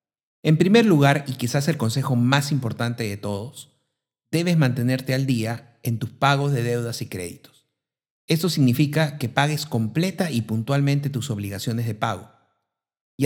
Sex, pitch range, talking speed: male, 120-150 Hz, 155 wpm